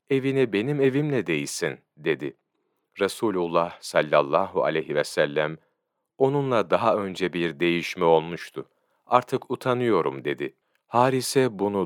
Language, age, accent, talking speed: Turkish, 40-59, native, 105 wpm